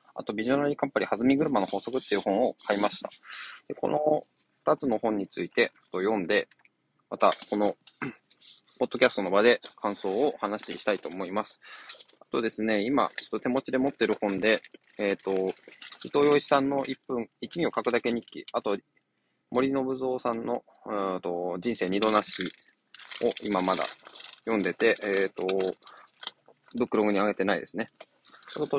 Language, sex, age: Japanese, male, 20-39